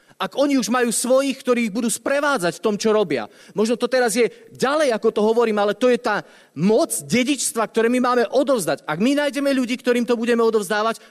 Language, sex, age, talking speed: Slovak, male, 30-49, 210 wpm